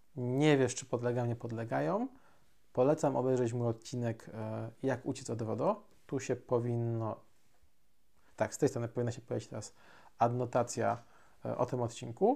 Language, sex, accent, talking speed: Polish, male, native, 140 wpm